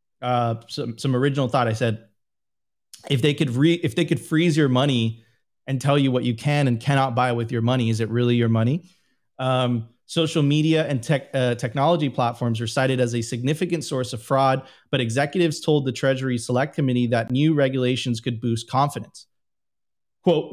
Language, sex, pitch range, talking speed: English, male, 120-150 Hz, 185 wpm